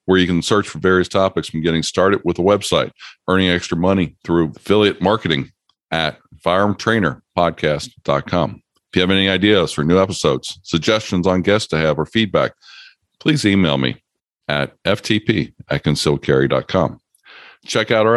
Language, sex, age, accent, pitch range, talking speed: English, male, 50-69, American, 80-100 Hz, 150 wpm